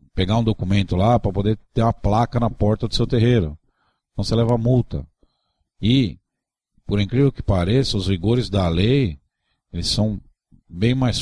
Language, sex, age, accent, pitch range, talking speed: Portuguese, male, 50-69, Brazilian, 85-115 Hz, 165 wpm